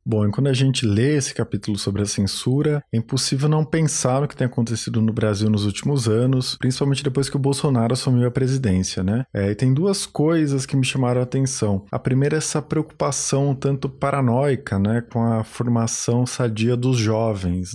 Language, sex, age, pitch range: Portuguese, male, 20-39, 105-130 Hz